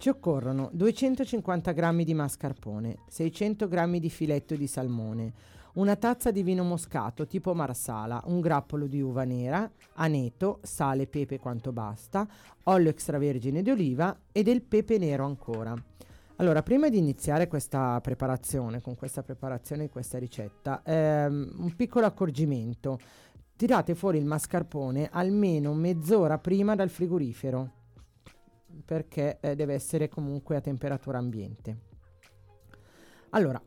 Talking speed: 130 wpm